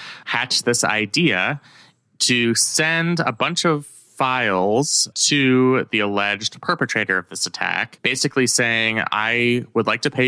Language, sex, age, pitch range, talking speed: English, male, 20-39, 95-125 Hz, 135 wpm